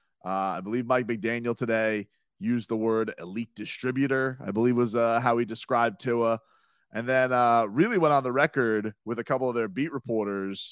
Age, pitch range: 30-49, 105-130 Hz